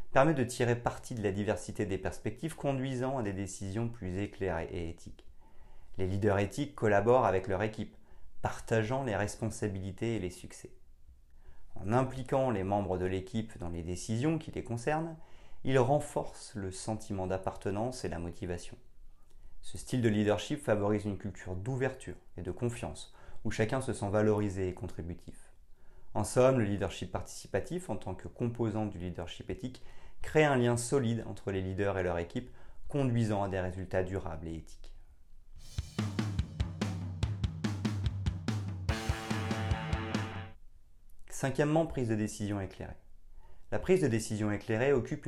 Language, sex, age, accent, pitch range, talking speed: French, male, 30-49, French, 95-120 Hz, 145 wpm